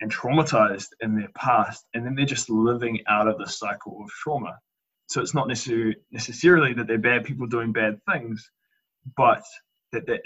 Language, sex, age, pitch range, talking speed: English, male, 20-39, 110-125 Hz, 175 wpm